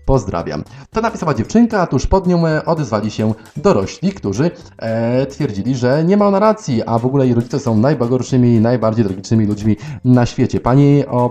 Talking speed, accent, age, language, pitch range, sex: 180 wpm, native, 30-49, Polish, 105-145 Hz, male